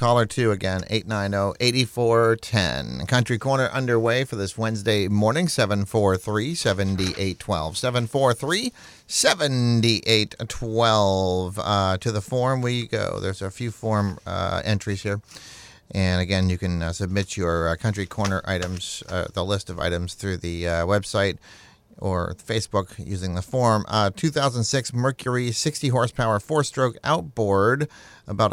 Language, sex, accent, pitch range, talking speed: English, male, American, 100-125 Hz, 125 wpm